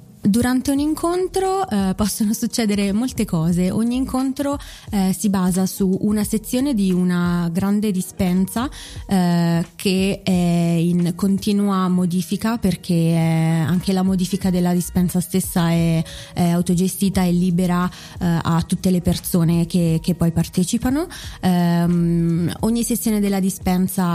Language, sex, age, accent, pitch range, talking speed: Italian, female, 20-39, native, 170-205 Hz, 130 wpm